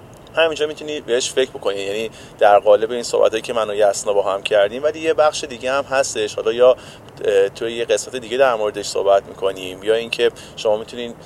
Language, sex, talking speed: Persian, male, 195 wpm